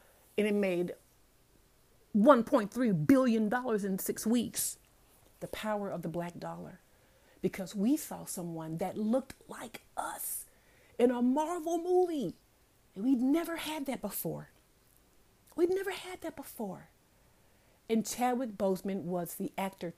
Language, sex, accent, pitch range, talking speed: English, female, American, 190-270 Hz, 130 wpm